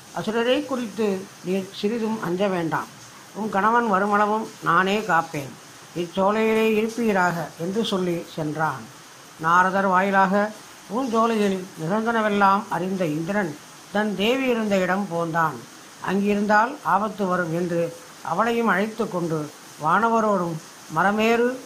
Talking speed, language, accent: 105 wpm, Tamil, native